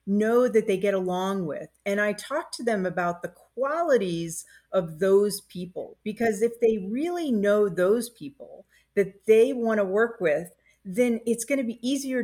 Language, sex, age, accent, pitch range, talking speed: English, female, 40-59, American, 185-235 Hz, 175 wpm